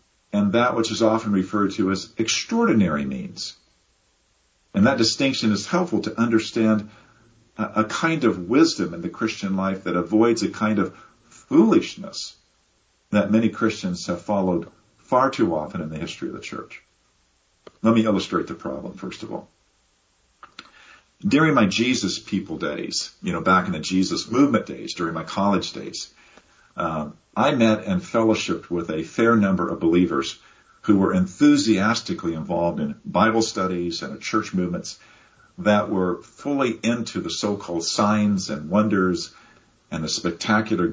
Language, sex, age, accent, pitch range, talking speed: English, male, 50-69, American, 95-115 Hz, 150 wpm